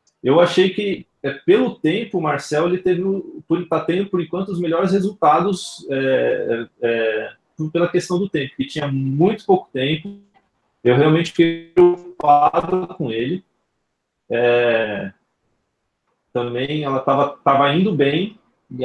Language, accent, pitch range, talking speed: Portuguese, Brazilian, 120-165 Hz, 130 wpm